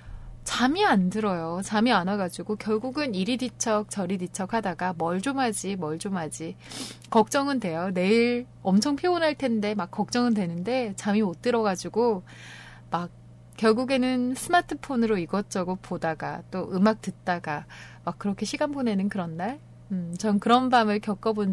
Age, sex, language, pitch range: 20-39, female, Korean, 165-235 Hz